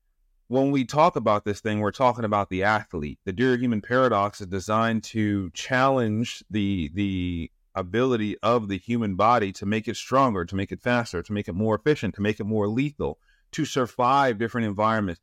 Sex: male